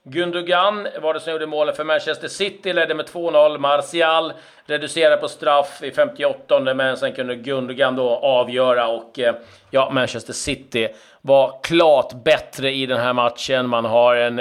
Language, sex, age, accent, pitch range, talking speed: Swedish, male, 40-59, native, 130-155 Hz, 160 wpm